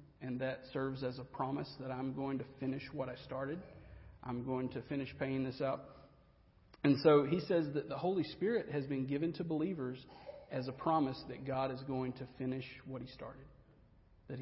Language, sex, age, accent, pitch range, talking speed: English, male, 40-59, American, 130-155 Hz, 195 wpm